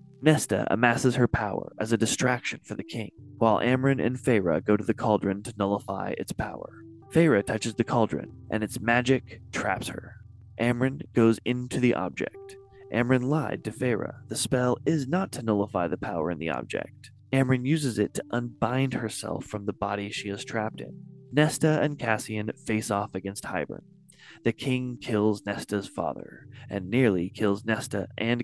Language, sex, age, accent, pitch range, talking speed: English, male, 20-39, American, 105-125 Hz, 170 wpm